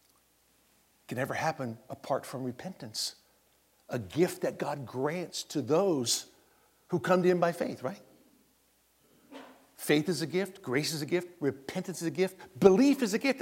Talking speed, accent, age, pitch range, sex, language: 160 wpm, American, 60-79, 115-170 Hz, male, English